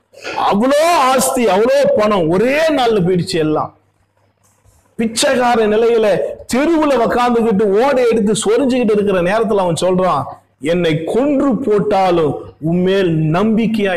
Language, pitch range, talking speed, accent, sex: Tamil, 170-240 Hz, 100 wpm, native, male